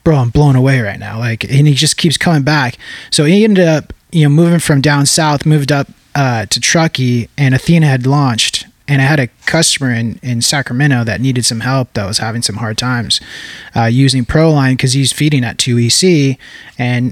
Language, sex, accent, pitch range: English, male, American, 130-150 Hz